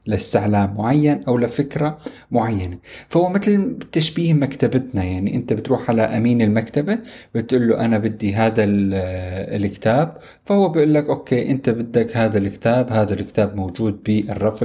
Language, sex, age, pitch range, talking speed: Arabic, male, 30-49, 105-135 Hz, 135 wpm